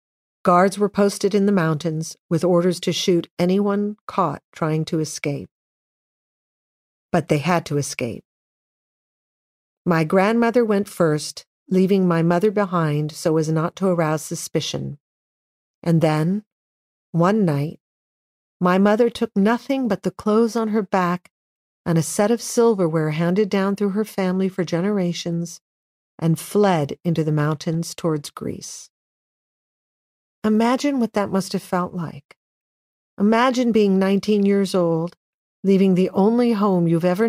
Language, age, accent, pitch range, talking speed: English, 50-69, American, 165-200 Hz, 135 wpm